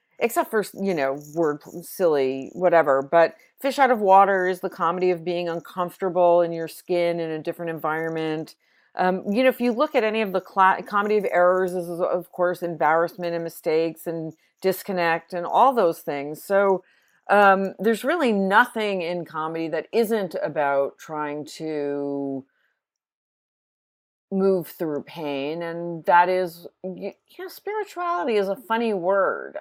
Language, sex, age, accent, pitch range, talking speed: English, female, 40-59, American, 160-195 Hz, 150 wpm